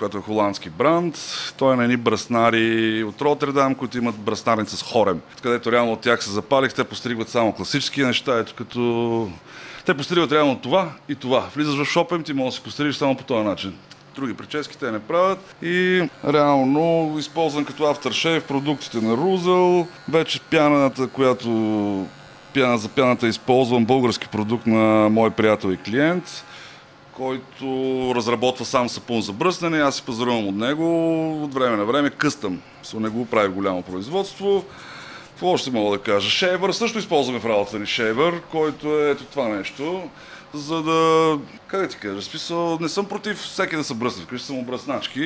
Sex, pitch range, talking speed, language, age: male, 115-160 Hz, 170 wpm, Bulgarian, 30-49